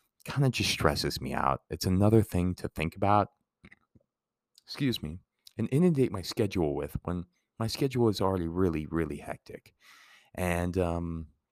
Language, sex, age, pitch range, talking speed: English, male, 30-49, 90-120 Hz, 150 wpm